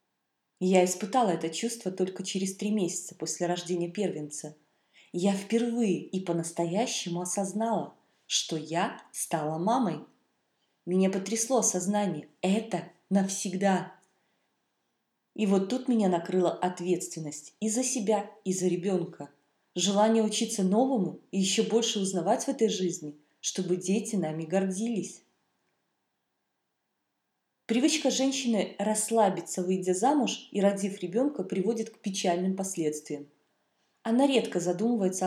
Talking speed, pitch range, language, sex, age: 110 wpm, 175-220 Hz, Russian, female, 20-39